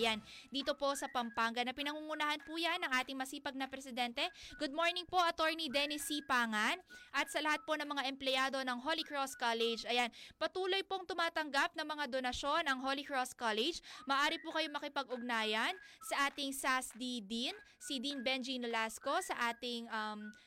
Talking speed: 175 wpm